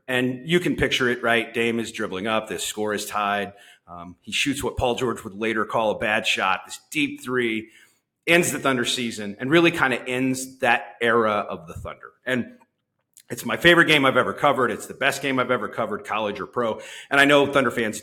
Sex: male